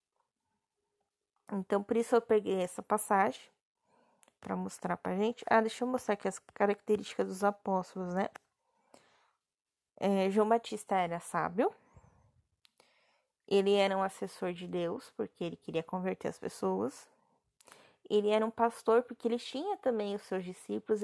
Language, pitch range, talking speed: Portuguese, 190-235 Hz, 145 wpm